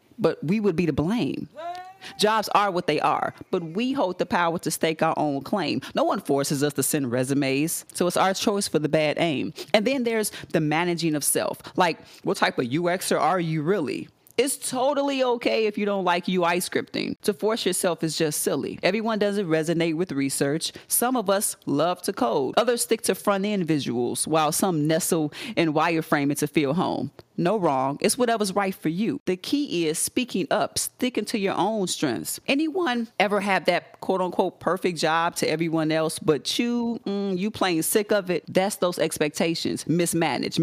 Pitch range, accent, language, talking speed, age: 160-215 Hz, American, English, 195 wpm, 30-49